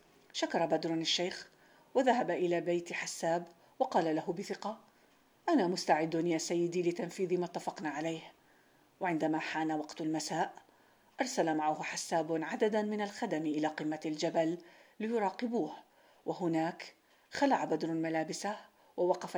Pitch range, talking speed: 160-180 Hz, 115 wpm